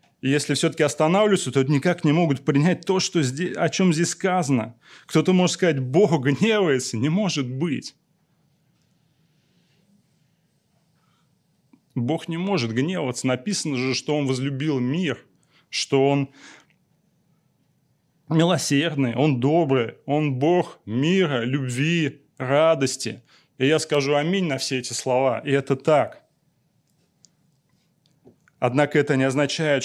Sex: male